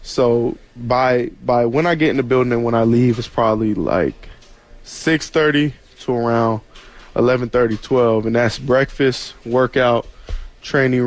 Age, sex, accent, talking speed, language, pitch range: 20-39, male, American, 145 wpm, English, 110-125 Hz